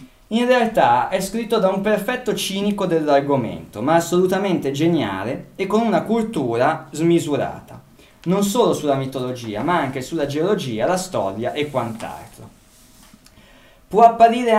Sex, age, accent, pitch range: male, 20-39, native, 135-190 Hz